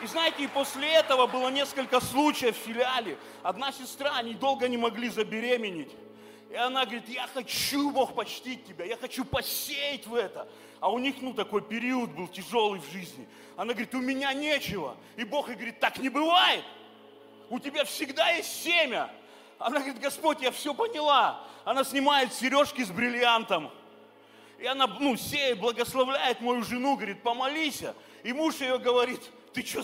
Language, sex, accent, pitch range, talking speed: Russian, male, native, 235-300 Hz, 165 wpm